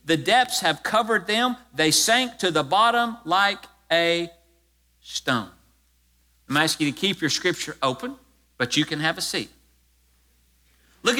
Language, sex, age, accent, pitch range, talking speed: English, male, 50-69, American, 165-245 Hz, 150 wpm